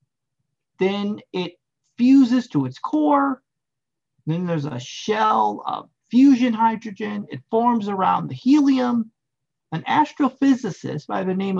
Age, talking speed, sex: 40-59, 120 wpm, male